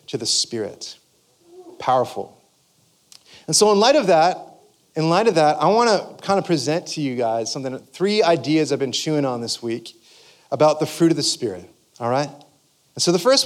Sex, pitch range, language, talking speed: male, 150-195 Hz, English, 195 wpm